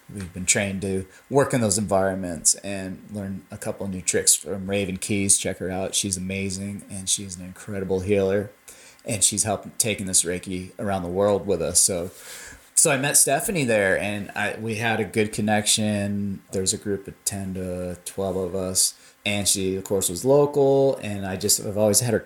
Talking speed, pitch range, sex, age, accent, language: 200 wpm, 95-110 Hz, male, 30-49, American, English